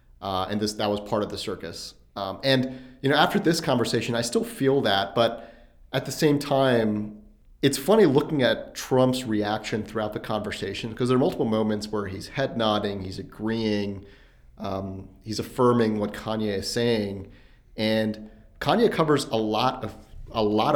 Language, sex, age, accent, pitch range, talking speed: English, male, 30-49, American, 105-130 Hz, 175 wpm